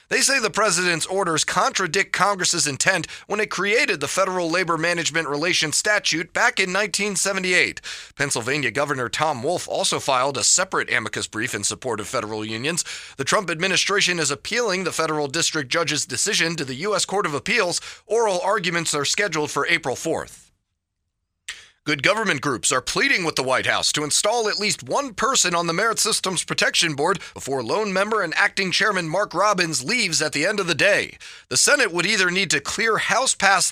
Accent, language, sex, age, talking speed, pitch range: American, English, male, 30-49, 180 wpm, 145-195 Hz